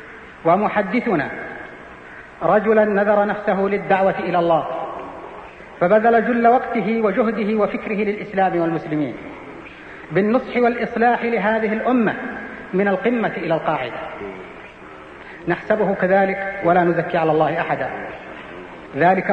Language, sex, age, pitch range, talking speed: Arabic, female, 40-59, 170-215 Hz, 95 wpm